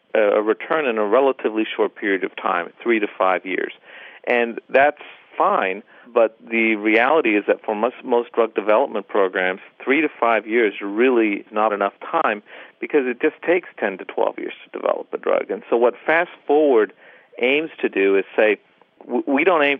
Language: English